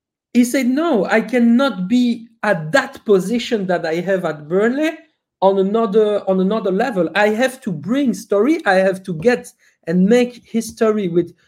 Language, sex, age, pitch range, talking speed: English, male, 50-69, 170-225 Hz, 165 wpm